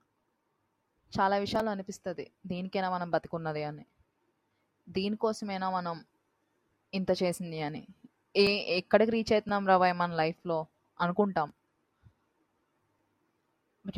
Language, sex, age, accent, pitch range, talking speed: Telugu, female, 20-39, native, 175-205 Hz, 90 wpm